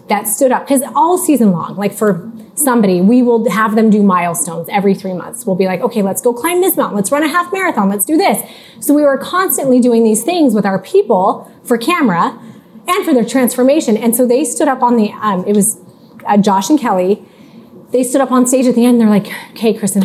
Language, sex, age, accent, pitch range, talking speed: English, female, 30-49, American, 200-265 Hz, 235 wpm